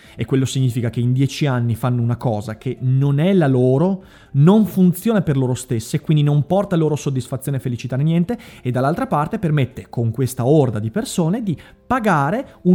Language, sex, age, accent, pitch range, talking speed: Italian, male, 30-49, native, 115-165 Hz, 185 wpm